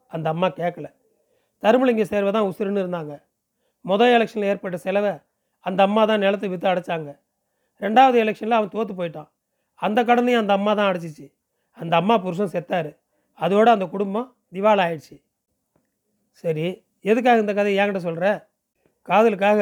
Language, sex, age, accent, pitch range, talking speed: Tamil, male, 40-59, native, 185-220 Hz, 140 wpm